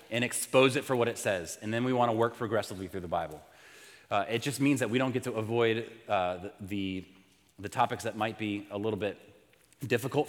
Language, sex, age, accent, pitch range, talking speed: English, male, 30-49, American, 110-145 Hz, 225 wpm